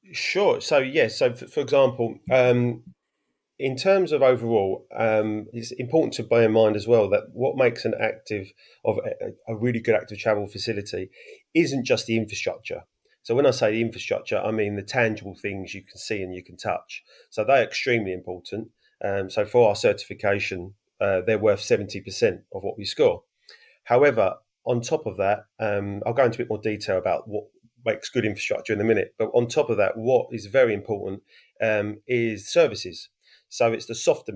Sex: male